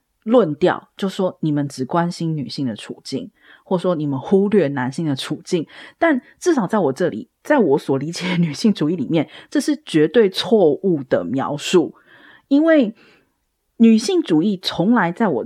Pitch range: 160-245 Hz